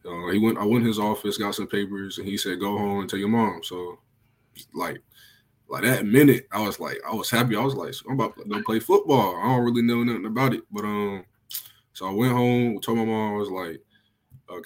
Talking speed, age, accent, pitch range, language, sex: 245 wpm, 20-39, American, 100-115 Hz, English, male